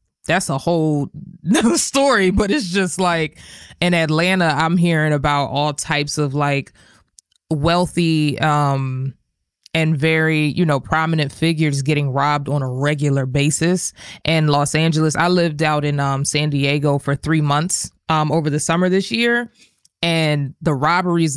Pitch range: 145-170 Hz